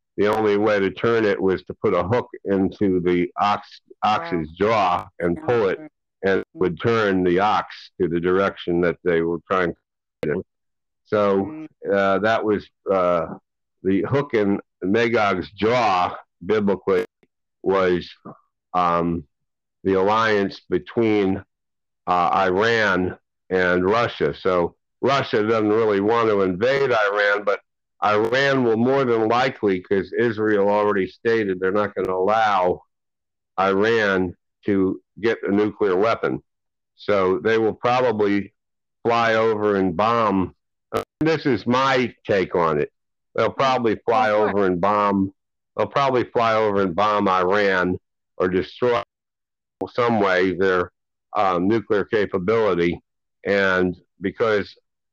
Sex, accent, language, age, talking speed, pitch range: male, American, English, 60-79, 130 wpm, 95-110 Hz